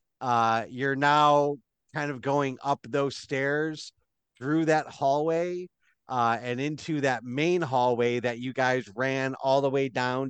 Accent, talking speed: American, 150 wpm